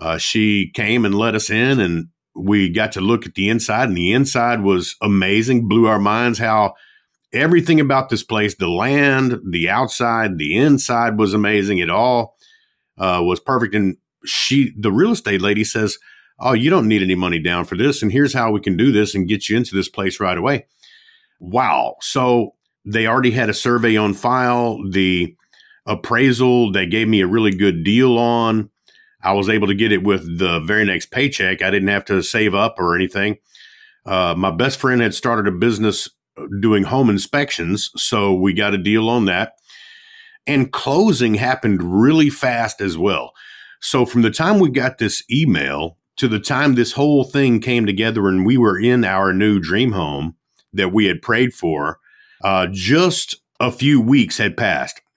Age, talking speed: 50-69, 185 wpm